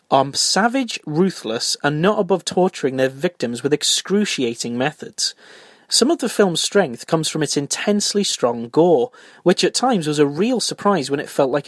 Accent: British